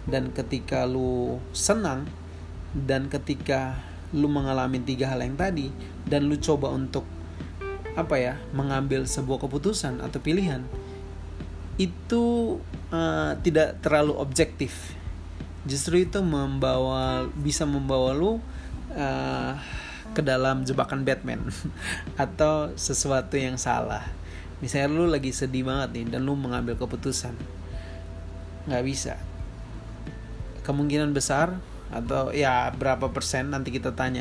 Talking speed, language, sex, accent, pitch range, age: 110 wpm, Indonesian, male, native, 90-140 Hz, 30-49